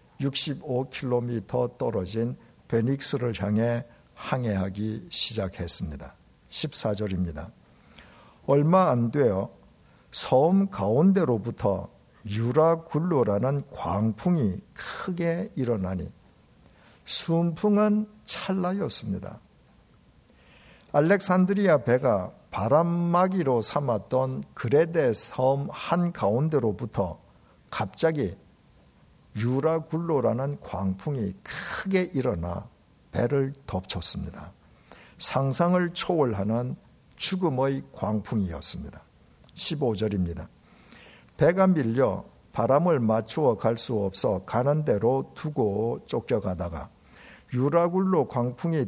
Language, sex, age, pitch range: Korean, male, 50-69, 105-160 Hz